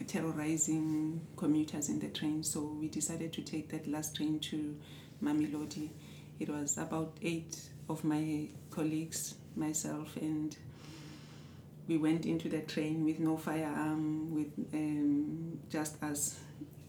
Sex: female